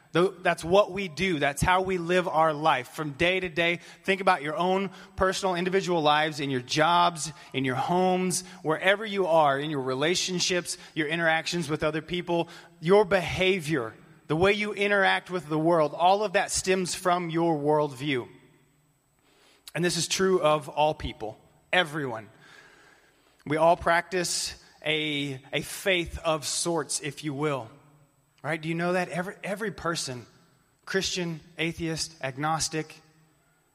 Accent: American